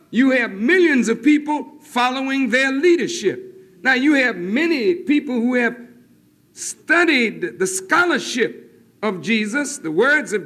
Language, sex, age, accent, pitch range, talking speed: French, male, 60-79, American, 200-290 Hz, 130 wpm